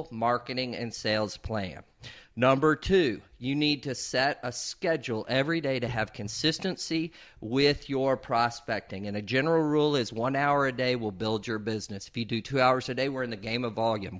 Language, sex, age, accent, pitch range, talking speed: English, male, 50-69, American, 110-145 Hz, 195 wpm